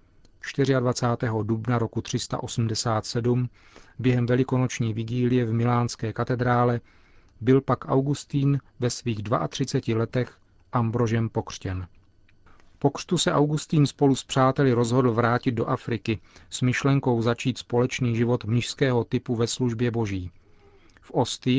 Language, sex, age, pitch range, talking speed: Czech, male, 40-59, 110-130 Hz, 115 wpm